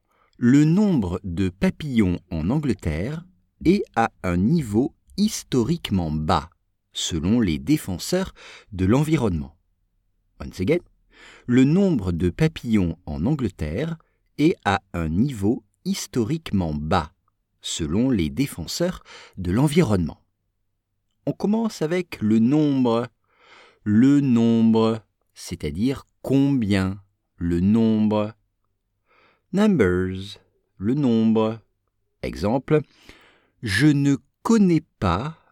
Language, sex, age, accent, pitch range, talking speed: English, male, 50-69, French, 95-145 Hz, 95 wpm